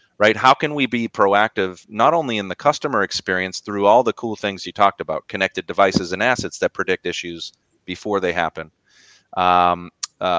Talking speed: 185 wpm